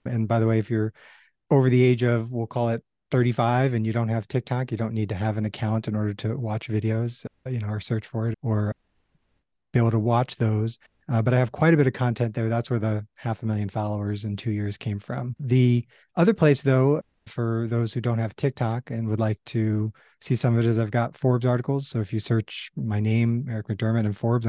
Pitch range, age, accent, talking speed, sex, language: 110-120 Hz, 30-49, American, 240 wpm, male, English